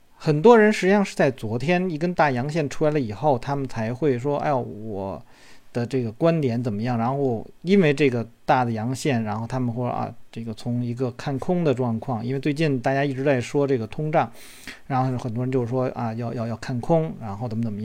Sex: male